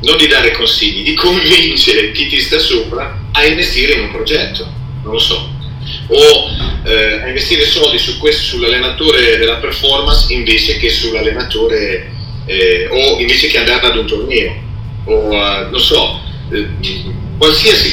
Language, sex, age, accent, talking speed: Italian, male, 40-59, native, 145 wpm